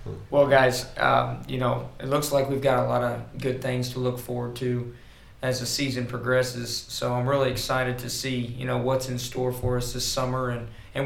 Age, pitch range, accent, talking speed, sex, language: 20-39, 120-135 Hz, American, 215 wpm, male, English